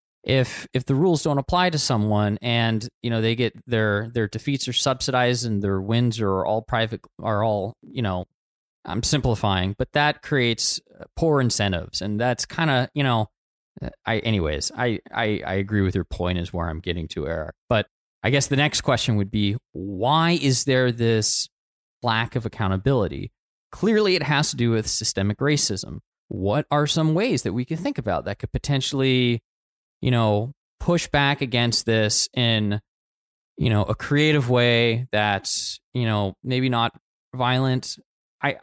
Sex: male